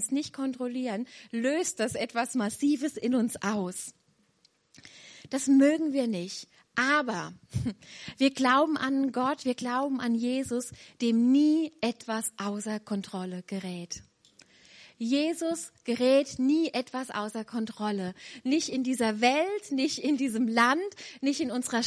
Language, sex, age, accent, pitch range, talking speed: German, female, 30-49, German, 225-275 Hz, 125 wpm